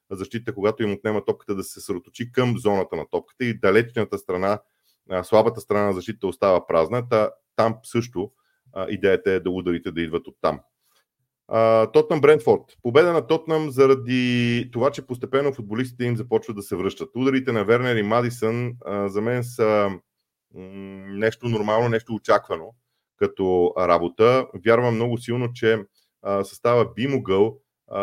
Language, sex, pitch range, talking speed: Bulgarian, male, 100-120 Hz, 140 wpm